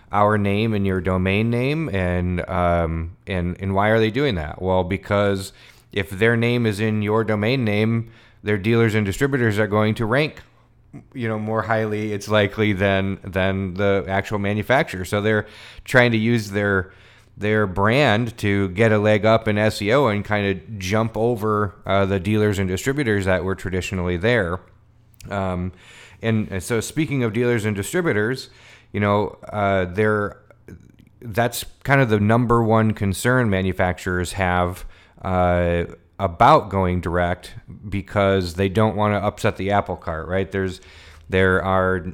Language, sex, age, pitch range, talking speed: English, male, 30-49, 95-110 Hz, 160 wpm